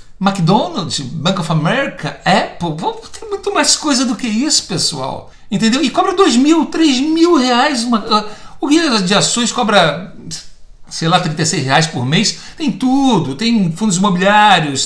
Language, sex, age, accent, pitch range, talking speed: Portuguese, male, 60-79, Brazilian, 165-215 Hz, 150 wpm